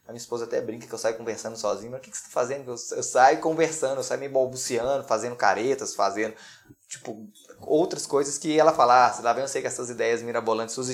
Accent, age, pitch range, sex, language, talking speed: Brazilian, 20-39, 110-135 Hz, male, Portuguese, 230 wpm